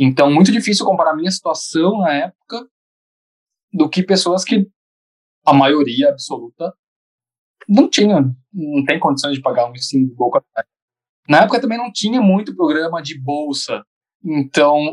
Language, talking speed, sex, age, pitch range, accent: Portuguese, 150 wpm, male, 20-39, 135-195 Hz, Brazilian